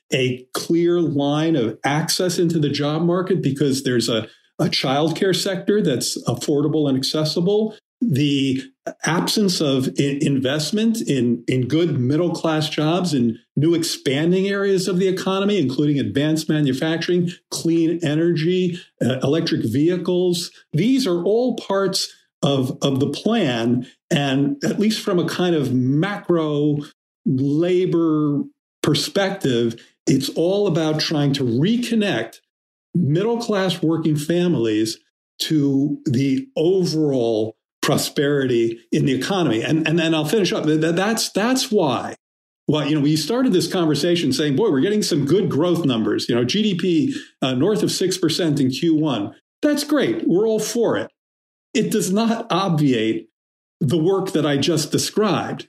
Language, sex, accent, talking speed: English, male, American, 140 wpm